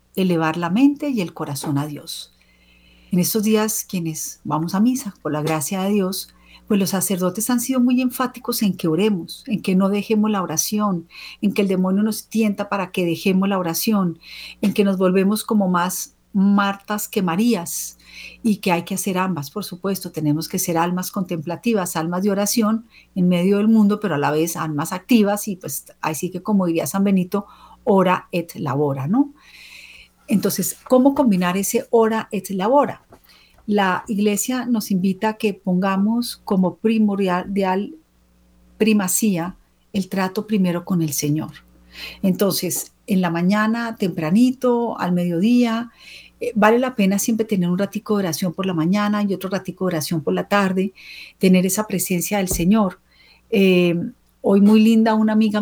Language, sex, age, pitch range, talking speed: Spanish, female, 40-59, 175-215 Hz, 170 wpm